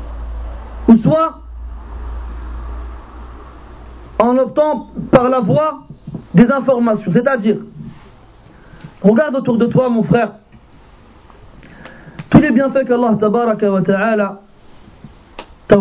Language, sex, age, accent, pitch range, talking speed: French, male, 40-59, French, 210-295 Hz, 85 wpm